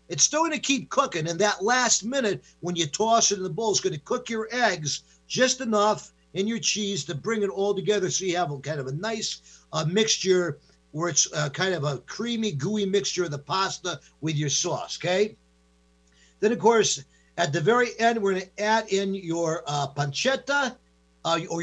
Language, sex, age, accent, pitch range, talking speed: English, male, 50-69, American, 165-220 Hz, 210 wpm